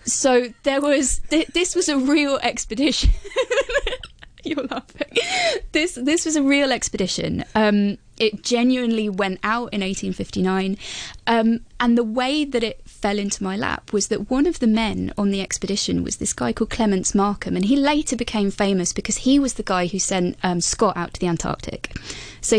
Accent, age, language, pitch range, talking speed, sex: British, 20-39, English, 195-270 Hz, 180 wpm, female